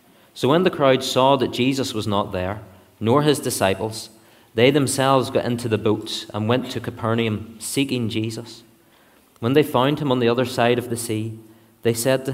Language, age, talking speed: English, 30-49, 190 wpm